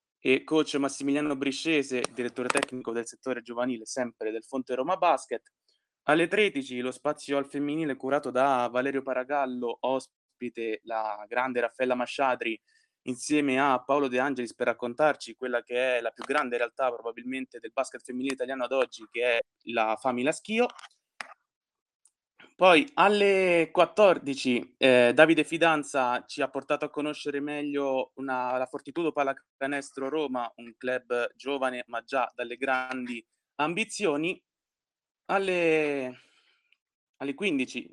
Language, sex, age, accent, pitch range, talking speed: Italian, male, 20-39, native, 120-150 Hz, 130 wpm